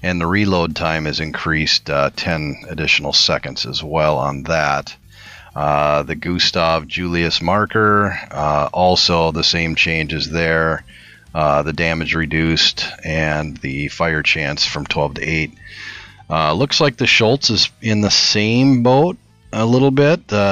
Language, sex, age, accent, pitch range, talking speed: English, male, 40-59, American, 80-105 Hz, 150 wpm